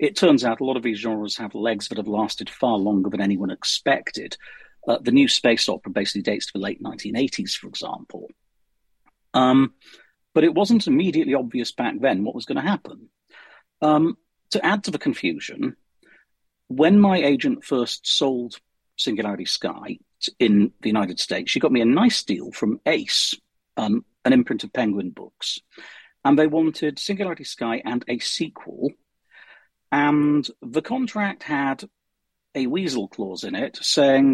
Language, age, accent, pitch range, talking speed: English, 50-69, British, 115-165 Hz, 160 wpm